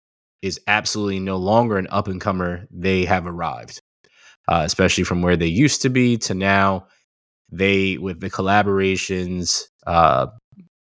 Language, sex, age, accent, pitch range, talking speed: Finnish, male, 20-39, American, 85-95 Hz, 145 wpm